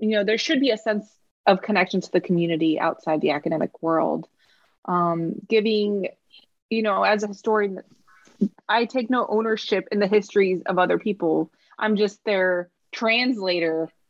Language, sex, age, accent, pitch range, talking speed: English, female, 20-39, American, 170-210 Hz, 160 wpm